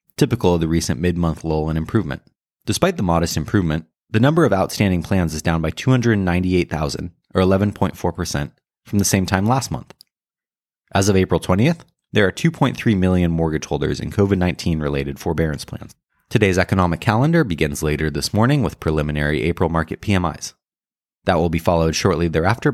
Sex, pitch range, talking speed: male, 80-110 Hz, 160 wpm